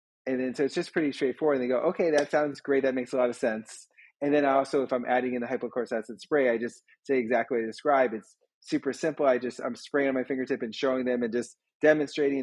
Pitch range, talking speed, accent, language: 120-135 Hz, 255 wpm, American, English